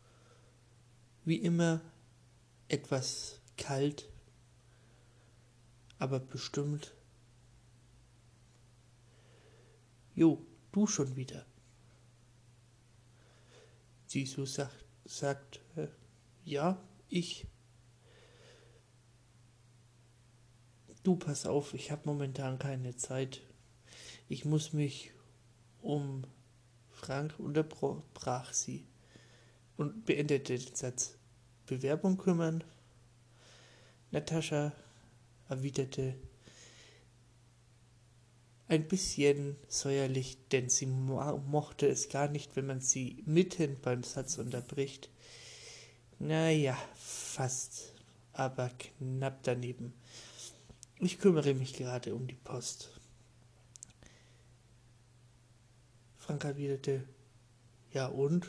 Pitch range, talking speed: 120-140 Hz, 75 wpm